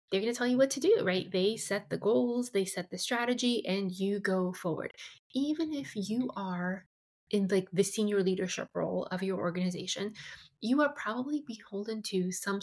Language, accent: English, American